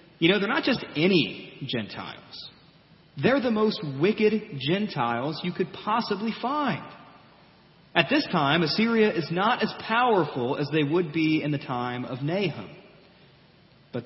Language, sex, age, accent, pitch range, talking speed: English, male, 30-49, American, 140-195 Hz, 145 wpm